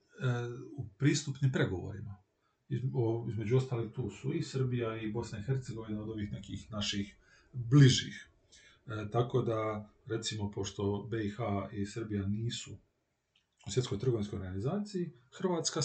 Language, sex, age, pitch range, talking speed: Croatian, male, 40-59, 110-135 Hz, 120 wpm